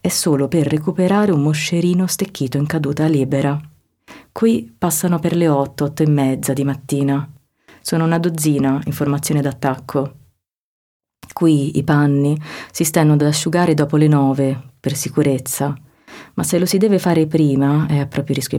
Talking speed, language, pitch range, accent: 160 wpm, Italian, 140-155 Hz, native